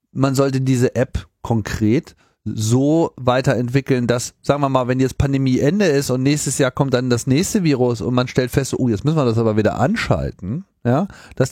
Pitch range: 120-140 Hz